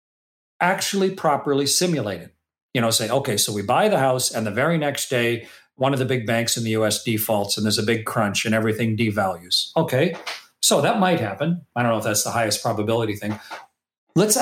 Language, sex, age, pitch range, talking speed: English, male, 40-59, 115-170 Hz, 210 wpm